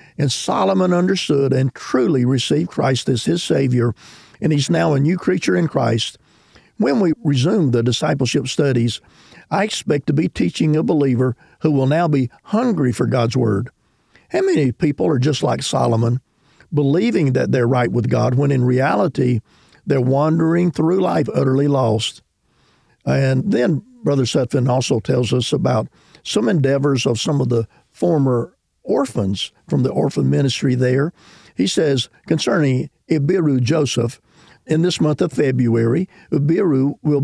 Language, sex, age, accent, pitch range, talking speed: English, male, 50-69, American, 125-155 Hz, 150 wpm